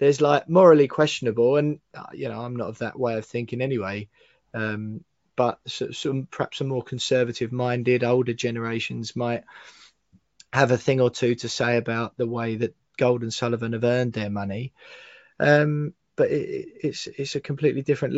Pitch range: 115-145 Hz